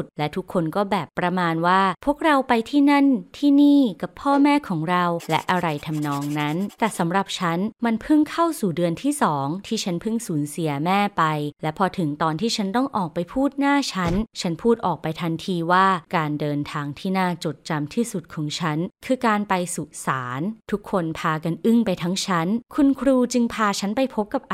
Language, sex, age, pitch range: Thai, female, 20-39, 165-225 Hz